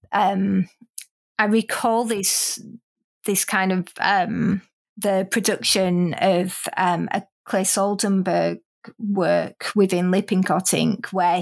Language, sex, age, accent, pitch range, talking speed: English, female, 30-49, British, 190-225 Hz, 105 wpm